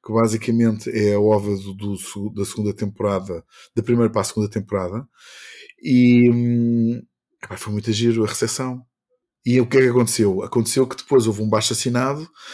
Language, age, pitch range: Portuguese, 20-39, 110-140 Hz